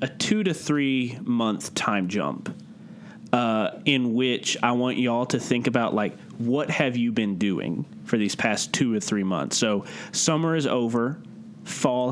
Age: 30-49